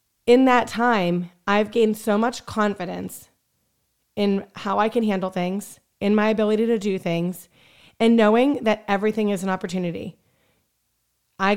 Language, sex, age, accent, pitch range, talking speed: English, female, 30-49, American, 185-230 Hz, 145 wpm